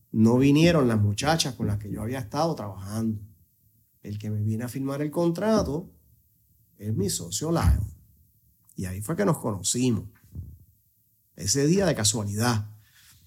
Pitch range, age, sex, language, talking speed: 105-150 Hz, 30-49, male, Spanish, 150 wpm